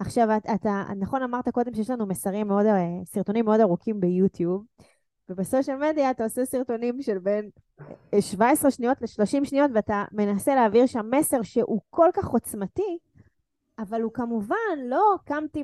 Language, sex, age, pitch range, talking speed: Hebrew, female, 20-39, 205-275 Hz, 150 wpm